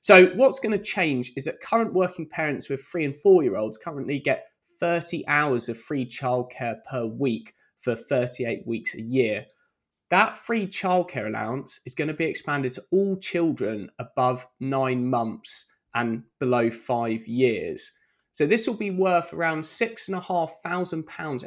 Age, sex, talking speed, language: 20-39, male, 150 wpm, English